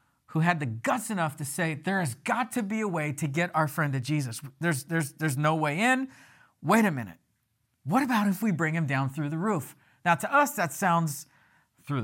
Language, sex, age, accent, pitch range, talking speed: English, male, 50-69, American, 155-220 Hz, 225 wpm